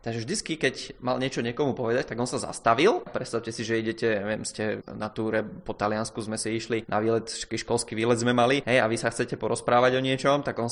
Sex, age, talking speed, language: male, 20-39, 225 wpm, Czech